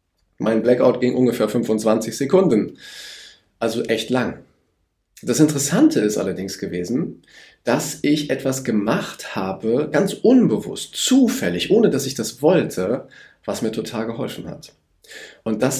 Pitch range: 110-145 Hz